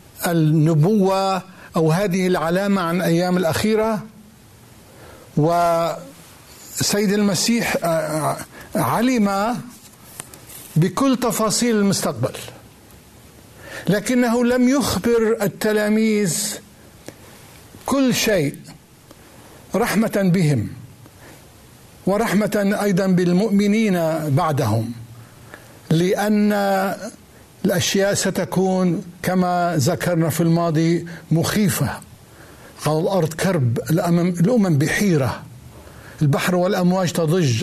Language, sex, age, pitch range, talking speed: Arabic, male, 60-79, 150-205 Hz, 65 wpm